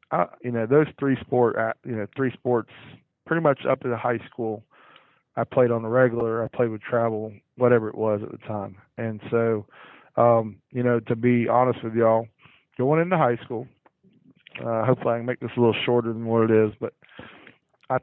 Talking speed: 205 wpm